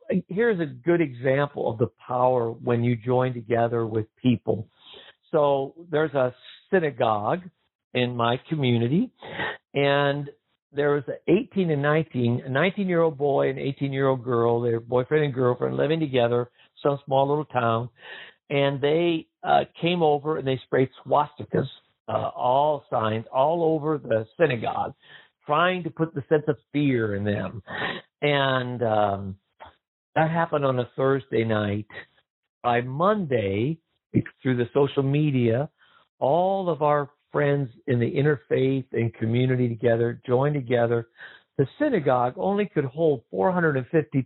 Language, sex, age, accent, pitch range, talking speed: English, male, 60-79, American, 120-155 Hz, 135 wpm